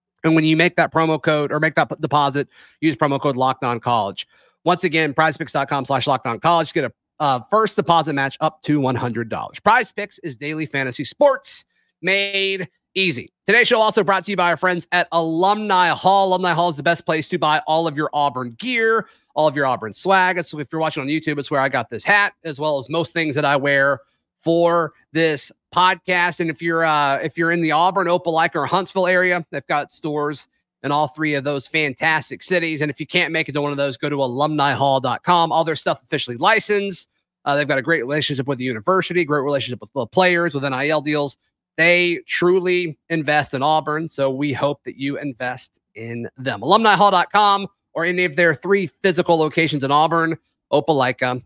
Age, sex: 30-49, male